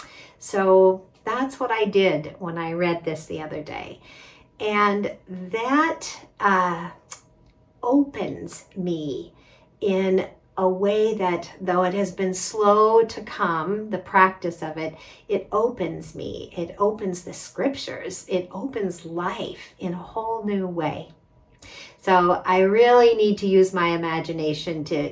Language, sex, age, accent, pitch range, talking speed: English, female, 50-69, American, 155-195 Hz, 135 wpm